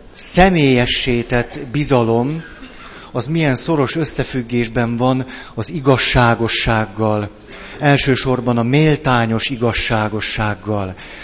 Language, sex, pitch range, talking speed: Hungarian, male, 110-140 Hz, 70 wpm